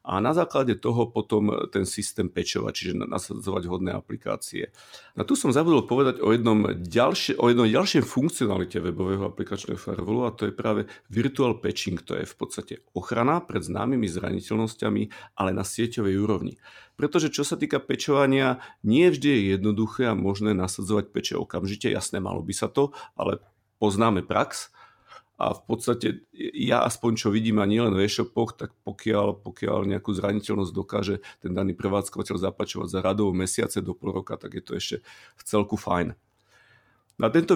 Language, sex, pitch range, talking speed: Slovak, male, 95-115 Hz, 160 wpm